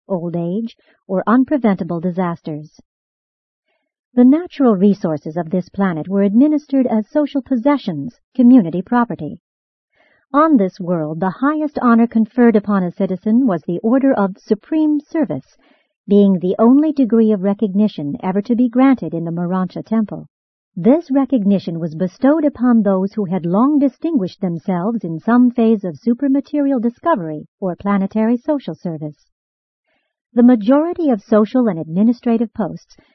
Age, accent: 50-69, American